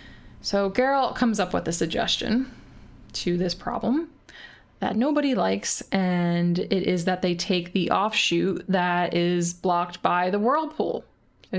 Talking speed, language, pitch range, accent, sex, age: 145 wpm, English, 180-225 Hz, American, female, 20-39